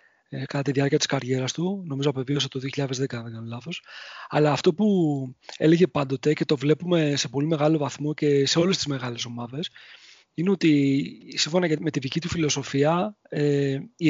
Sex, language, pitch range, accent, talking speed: male, Greek, 140-175 Hz, Spanish, 170 wpm